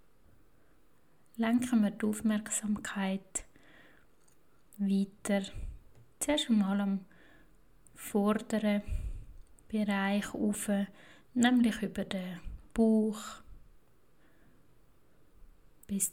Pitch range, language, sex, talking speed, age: 190-215 Hz, German, female, 60 wpm, 20-39